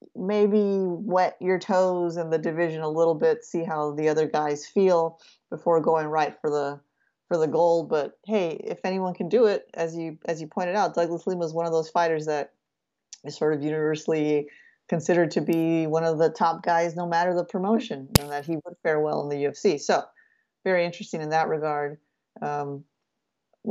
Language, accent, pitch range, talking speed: English, American, 155-185 Hz, 195 wpm